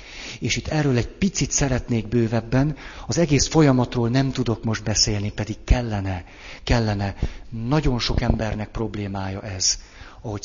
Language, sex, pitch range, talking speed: Hungarian, male, 100-130 Hz, 130 wpm